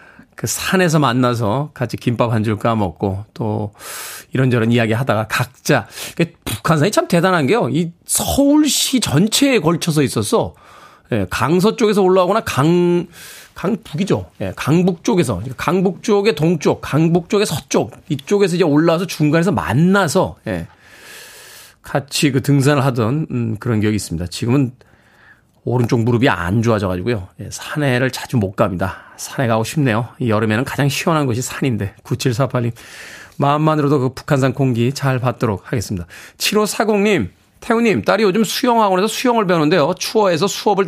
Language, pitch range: Korean, 120-190 Hz